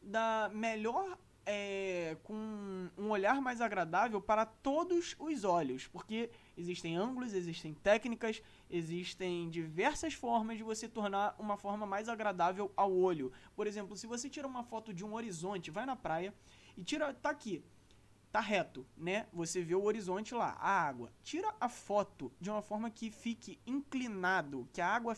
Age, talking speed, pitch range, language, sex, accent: 20-39, 160 wpm, 175-230 Hz, Portuguese, male, Brazilian